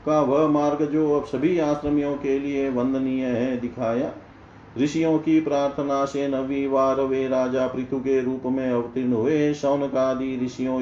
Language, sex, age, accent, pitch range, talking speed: Hindi, male, 40-59, native, 115-145 Hz, 130 wpm